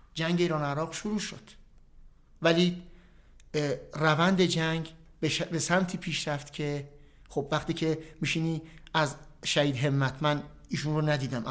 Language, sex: Persian, male